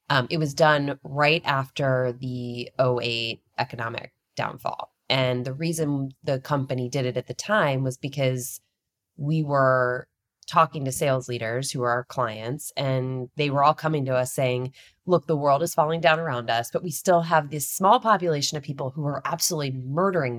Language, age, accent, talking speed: English, 20-39, American, 180 wpm